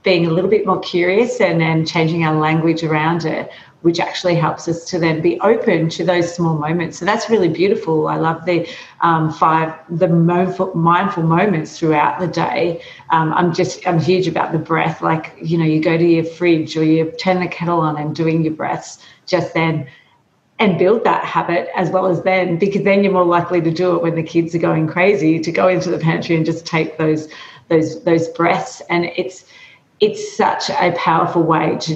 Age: 40-59